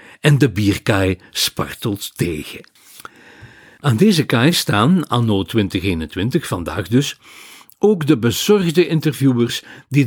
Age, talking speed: 60-79, 105 wpm